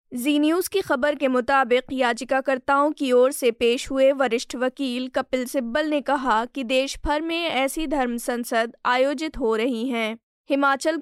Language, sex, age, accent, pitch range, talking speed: Hindi, female, 20-39, native, 245-285 Hz, 165 wpm